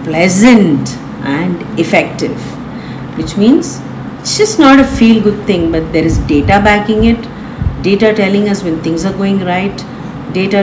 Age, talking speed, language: 50-69, 150 wpm, English